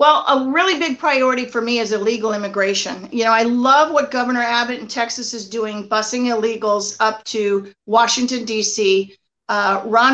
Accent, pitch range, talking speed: American, 225-270 Hz, 170 wpm